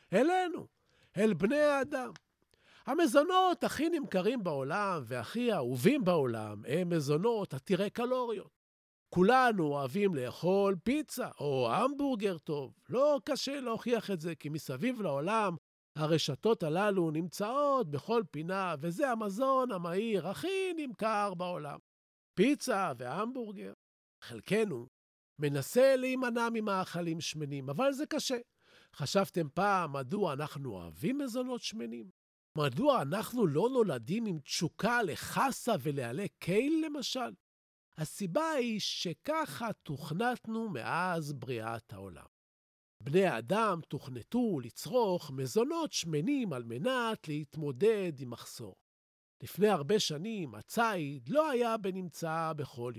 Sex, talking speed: male, 105 wpm